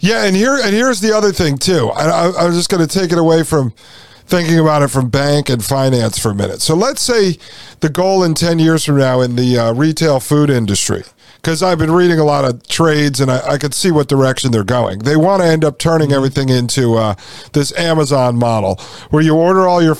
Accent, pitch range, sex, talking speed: American, 125-165 Hz, male, 230 wpm